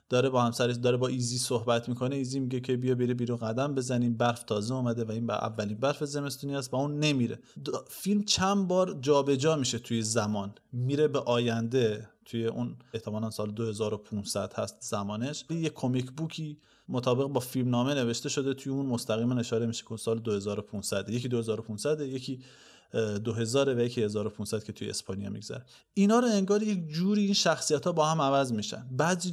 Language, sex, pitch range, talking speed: Persian, male, 115-140 Hz, 175 wpm